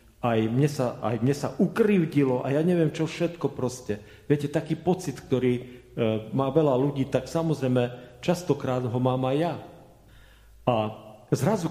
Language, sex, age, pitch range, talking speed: Slovak, male, 40-59, 110-170 Hz, 145 wpm